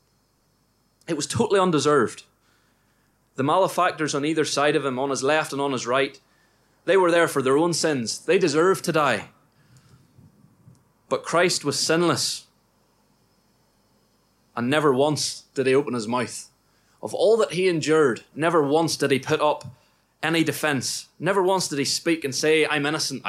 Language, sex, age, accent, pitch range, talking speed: English, male, 20-39, British, 135-165 Hz, 160 wpm